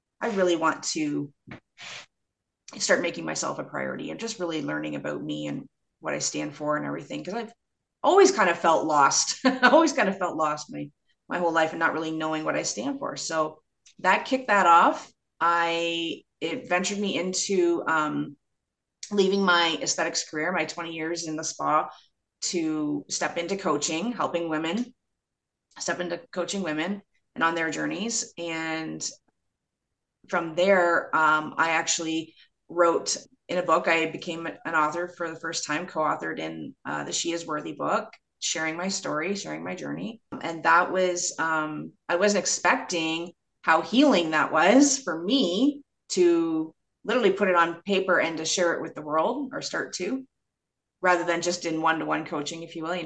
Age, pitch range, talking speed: 30-49, 160-195 Hz, 175 wpm